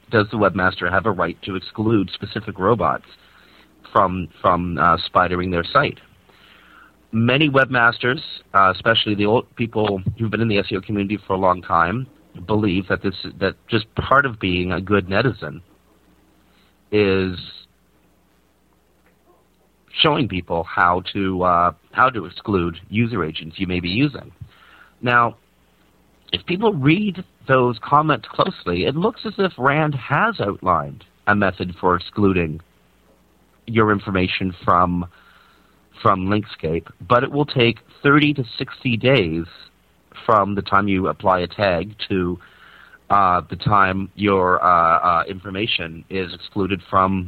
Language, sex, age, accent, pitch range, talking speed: English, male, 40-59, American, 90-120 Hz, 135 wpm